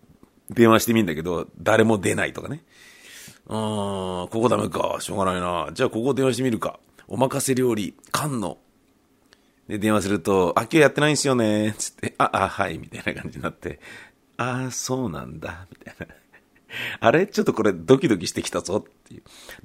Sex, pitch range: male, 90-130 Hz